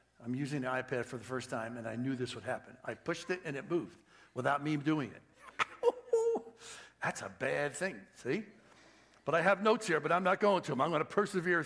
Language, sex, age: English, male, 60-79